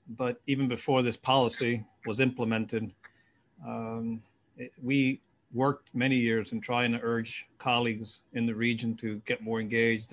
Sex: male